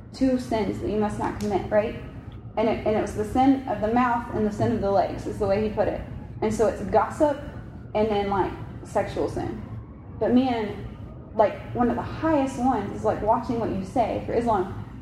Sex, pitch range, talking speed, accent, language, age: female, 185-240 Hz, 220 wpm, American, English, 20-39